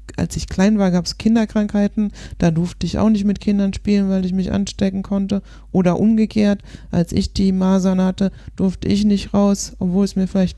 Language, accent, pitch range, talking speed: German, German, 135-205 Hz, 200 wpm